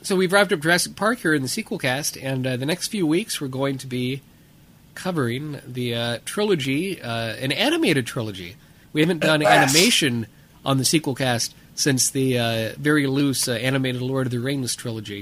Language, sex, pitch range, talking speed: English, male, 115-150 Hz, 195 wpm